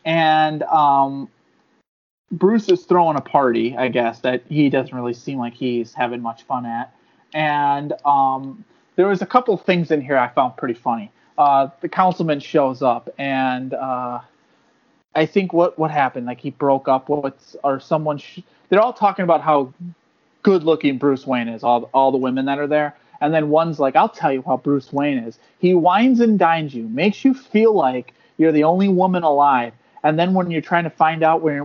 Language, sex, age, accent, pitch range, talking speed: English, male, 30-49, American, 135-185 Hz, 195 wpm